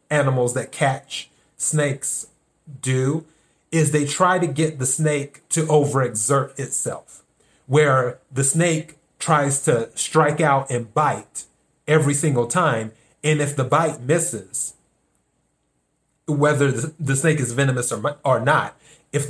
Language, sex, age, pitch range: English, male, 30-49, 130-160 Hz